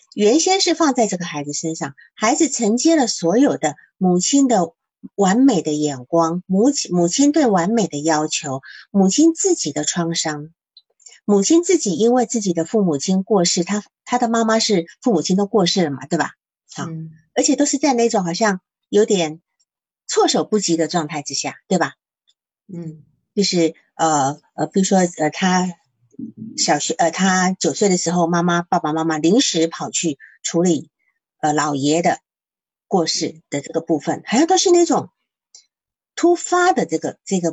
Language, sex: Chinese, female